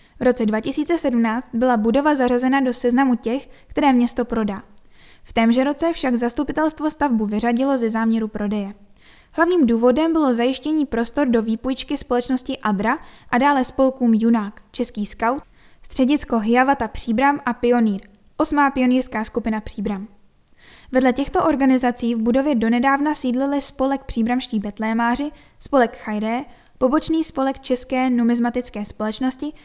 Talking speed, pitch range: 130 wpm, 230-270 Hz